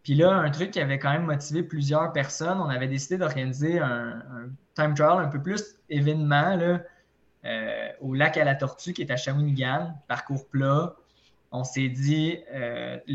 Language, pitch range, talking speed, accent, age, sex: French, 125-155 Hz, 185 wpm, Canadian, 20-39, male